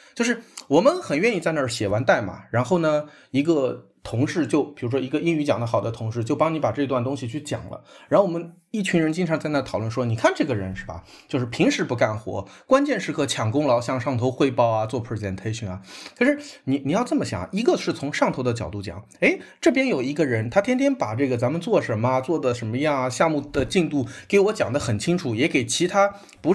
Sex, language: male, Chinese